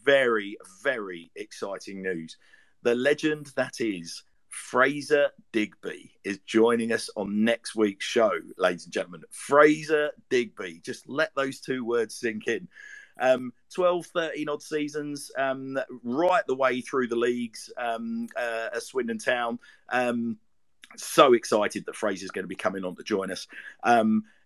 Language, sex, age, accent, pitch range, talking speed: English, male, 50-69, British, 105-135 Hz, 145 wpm